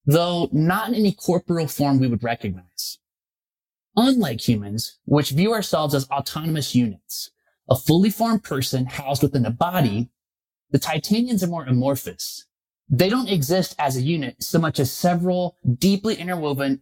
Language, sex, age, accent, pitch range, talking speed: English, male, 20-39, American, 135-185 Hz, 150 wpm